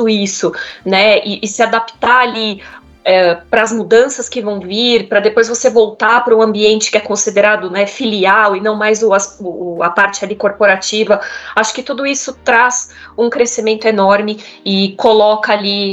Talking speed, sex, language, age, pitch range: 175 wpm, female, English, 20-39, 200-235 Hz